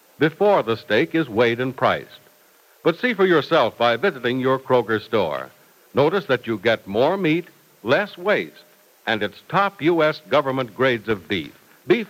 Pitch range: 115-175 Hz